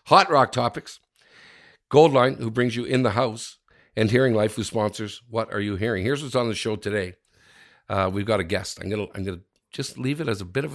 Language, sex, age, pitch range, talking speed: English, male, 50-69, 110-140 Hz, 235 wpm